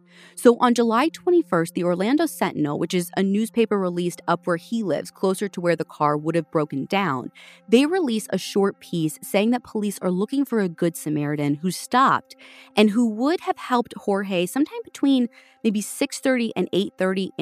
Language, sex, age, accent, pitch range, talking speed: English, female, 30-49, American, 160-240 Hz, 185 wpm